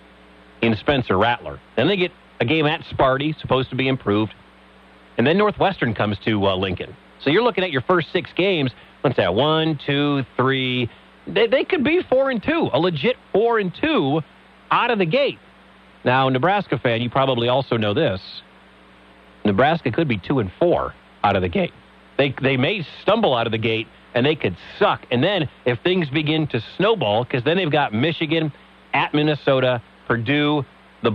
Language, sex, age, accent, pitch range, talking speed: English, male, 40-59, American, 115-165 Hz, 185 wpm